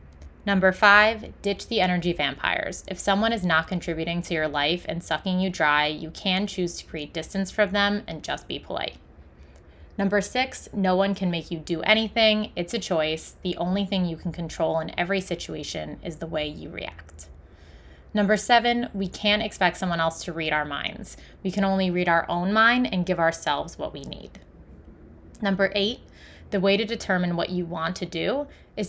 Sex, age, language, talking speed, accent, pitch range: female, 20-39, English, 190 wpm, American, 165-205 Hz